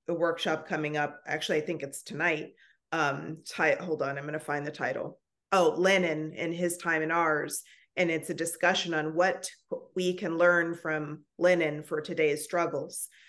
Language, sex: English, female